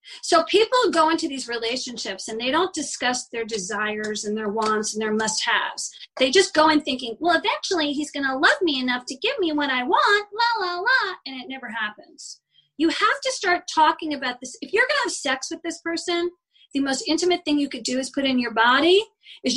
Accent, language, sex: American, English, female